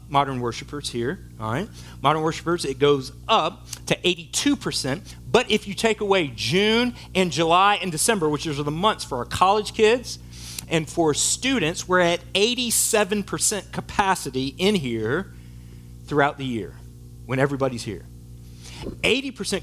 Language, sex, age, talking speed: English, male, 40-59, 140 wpm